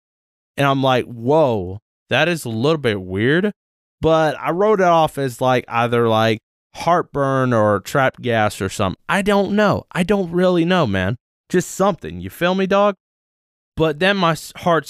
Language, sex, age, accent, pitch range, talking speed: English, male, 20-39, American, 110-155 Hz, 175 wpm